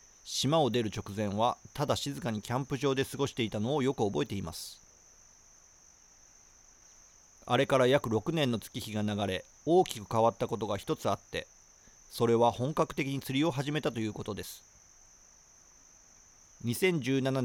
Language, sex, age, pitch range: Japanese, male, 40-59, 100-135 Hz